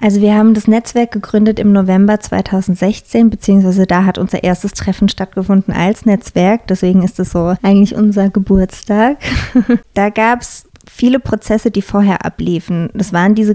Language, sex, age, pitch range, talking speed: German, female, 20-39, 185-215 Hz, 155 wpm